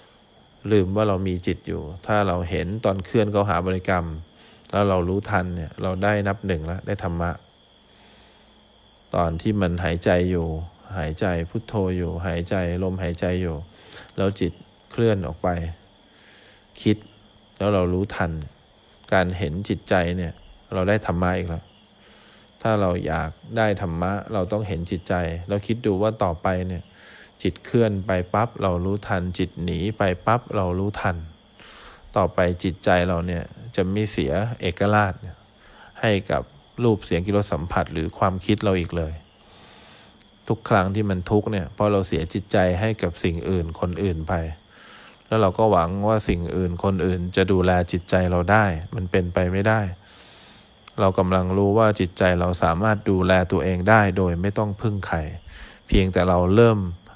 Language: English